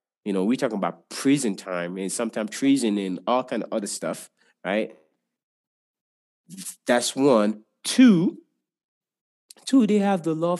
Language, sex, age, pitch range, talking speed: English, male, 30-49, 110-145 Hz, 140 wpm